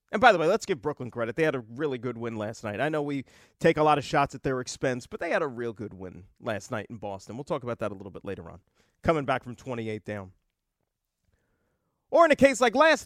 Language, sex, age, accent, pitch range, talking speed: English, male, 40-59, American, 140-210 Hz, 265 wpm